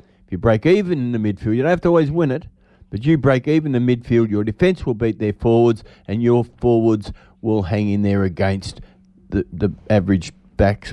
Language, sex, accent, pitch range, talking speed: English, male, Australian, 105-150 Hz, 215 wpm